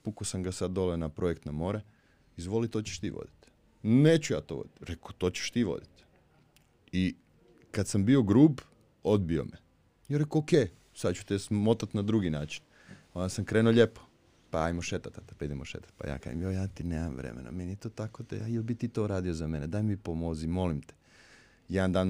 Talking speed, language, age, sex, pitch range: 210 wpm, Croatian, 30-49, male, 90-120 Hz